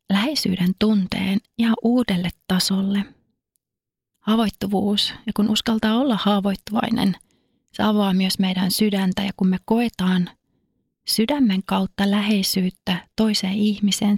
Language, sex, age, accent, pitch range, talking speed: Finnish, female, 30-49, native, 190-220 Hz, 105 wpm